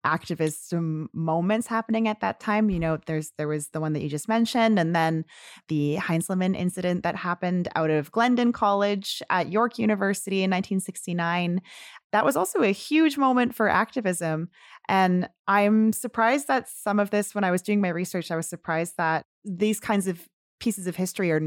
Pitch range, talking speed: 170-220 Hz, 180 wpm